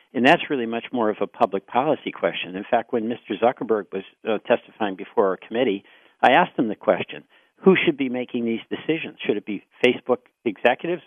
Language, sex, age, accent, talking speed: English, male, 50-69, American, 200 wpm